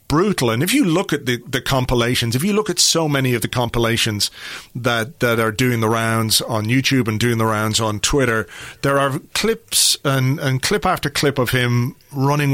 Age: 40-59